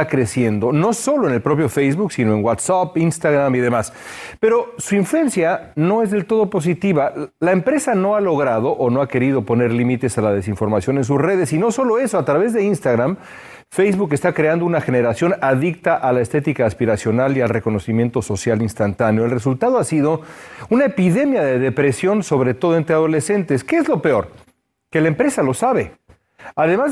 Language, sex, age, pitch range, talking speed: Spanish, male, 40-59, 120-185 Hz, 185 wpm